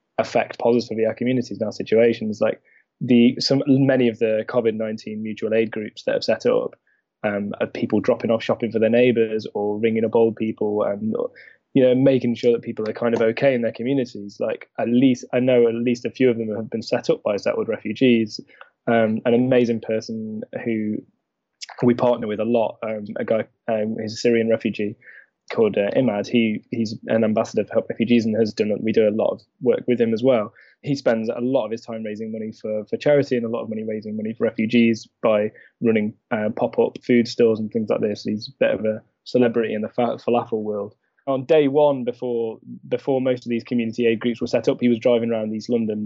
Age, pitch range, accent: 10-29, 110-125 Hz, British